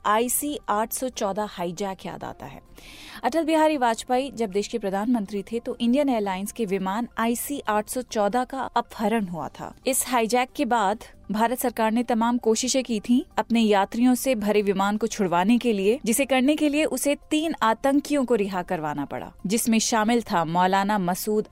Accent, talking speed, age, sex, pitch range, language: native, 170 wpm, 30-49, female, 205-255 Hz, Hindi